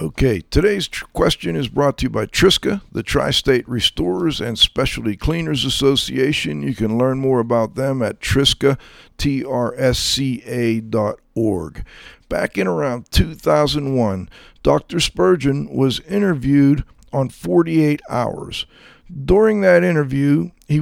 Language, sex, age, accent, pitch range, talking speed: English, male, 50-69, American, 120-155 Hz, 120 wpm